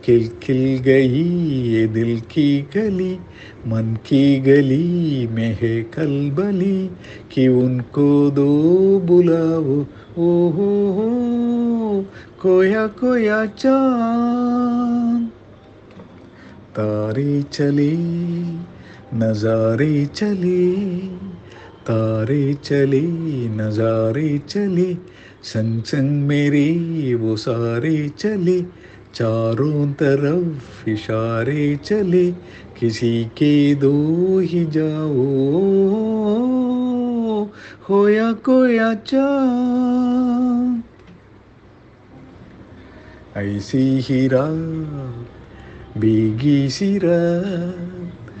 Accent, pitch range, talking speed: native, 115-190 Hz, 45 wpm